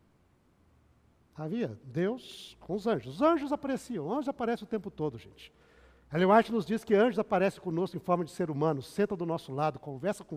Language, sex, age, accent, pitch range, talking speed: Portuguese, male, 60-79, Brazilian, 155-215 Hz, 185 wpm